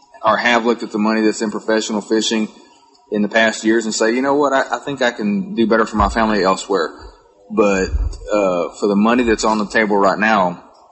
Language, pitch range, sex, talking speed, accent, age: English, 105-125 Hz, male, 225 wpm, American, 30-49